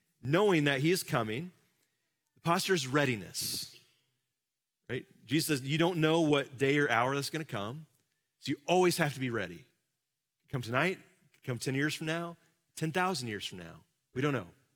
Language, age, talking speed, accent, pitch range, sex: English, 30-49, 175 wpm, American, 125-160 Hz, male